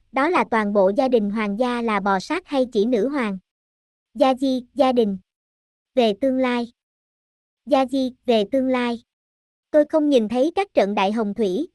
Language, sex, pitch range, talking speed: Vietnamese, male, 225-290 Hz, 185 wpm